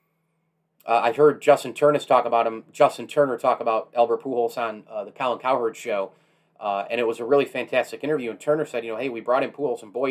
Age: 30-49